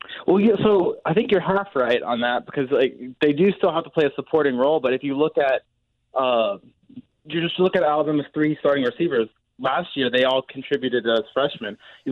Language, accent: English, American